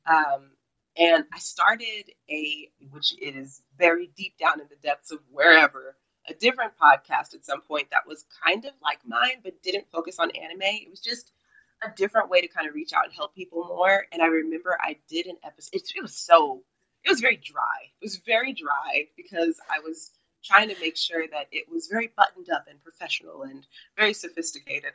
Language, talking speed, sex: English, 200 wpm, female